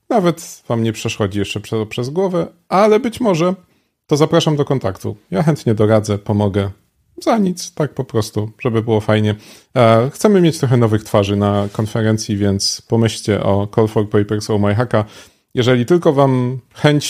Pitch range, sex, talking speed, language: 100-140 Hz, male, 165 wpm, Polish